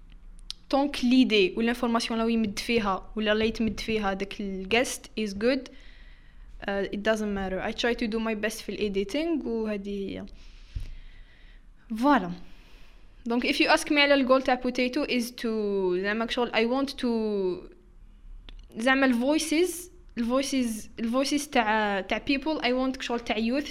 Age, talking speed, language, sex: 10-29, 155 wpm, Arabic, female